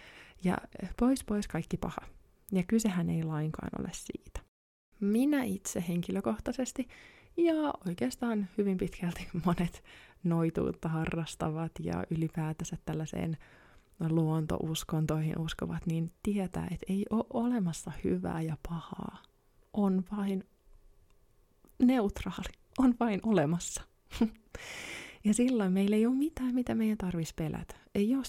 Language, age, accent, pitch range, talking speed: Finnish, 20-39, native, 160-220 Hz, 110 wpm